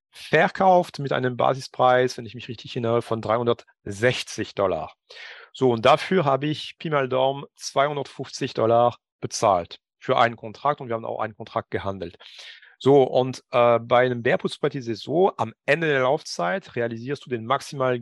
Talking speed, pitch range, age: 165 wpm, 120-150 Hz, 40-59